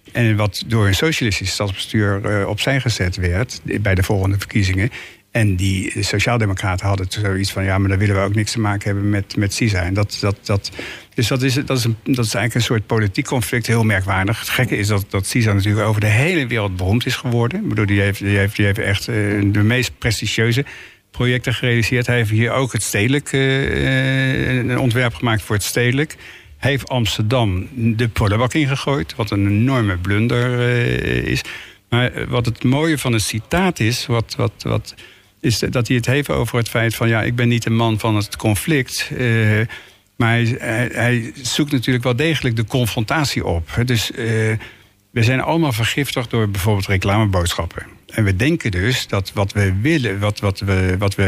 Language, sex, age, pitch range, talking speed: Dutch, male, 60-79, 100-125 Hz, 185 wpm